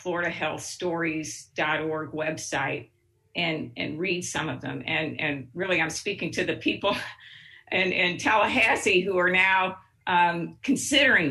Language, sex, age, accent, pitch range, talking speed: English, female, 50-69, American, 145-185 Hz, 125 wpm